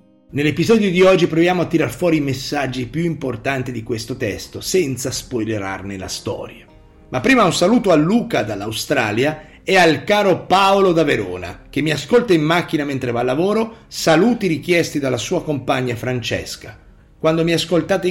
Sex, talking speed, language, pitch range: male, 160 wpm, Italian, 130-185 Hz